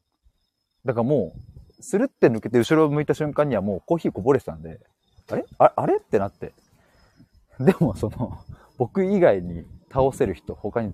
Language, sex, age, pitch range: Japanese, male, 30-49, 105-150 Hz